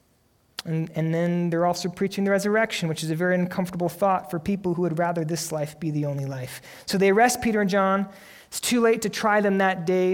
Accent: American